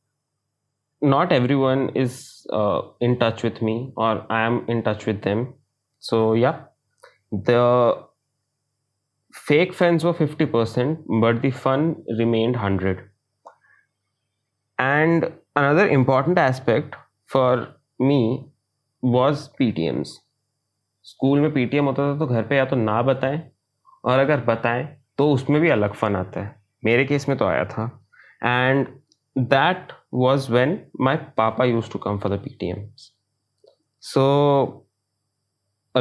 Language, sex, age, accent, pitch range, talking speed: Hindi, male, 20-39, native, 115-140 Hz, 135 wpm